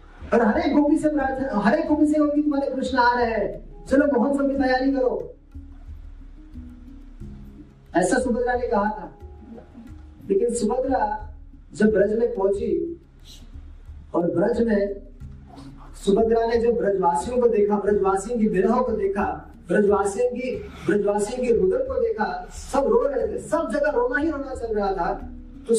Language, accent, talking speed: Hindi, native, 130 wpm